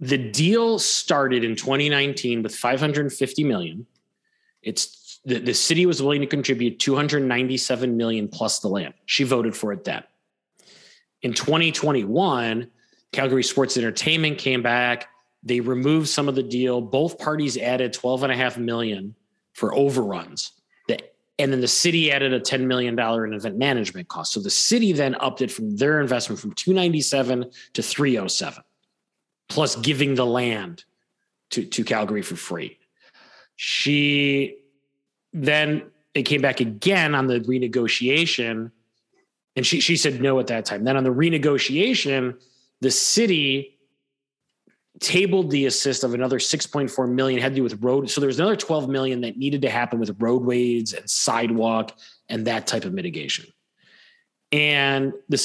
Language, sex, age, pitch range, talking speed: English, male, 30-49, 125-150 Hz, 150 wpm